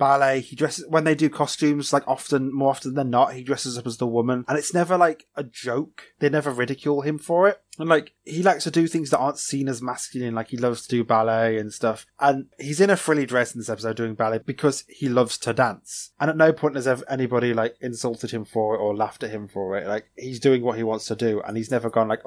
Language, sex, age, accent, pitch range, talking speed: English, male, 20-39, British, 110-140 Hz, 260 wpm